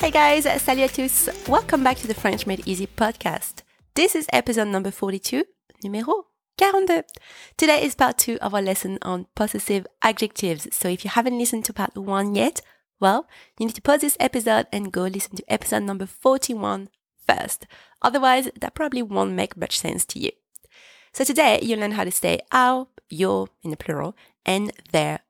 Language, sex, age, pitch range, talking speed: English, female, 30-49, 190-265 Hz, 185 wpm